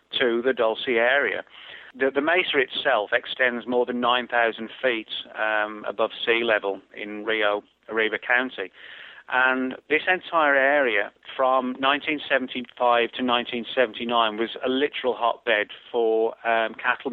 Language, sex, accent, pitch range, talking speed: English, male, British, 115-130 Hz, 125 wpm